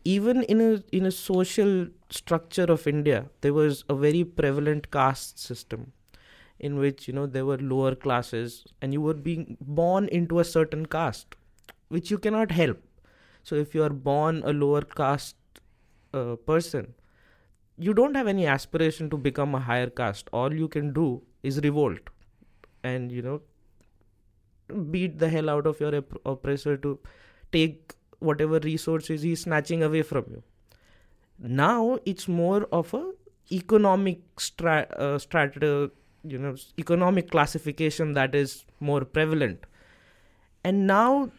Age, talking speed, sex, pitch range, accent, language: 20-39, 150 wpm, male, 135-170 Hz, Indian, English